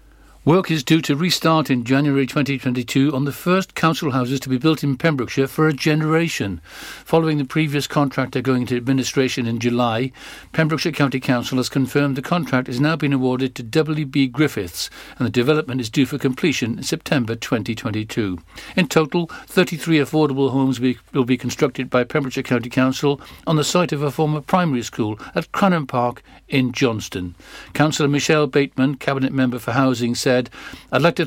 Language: English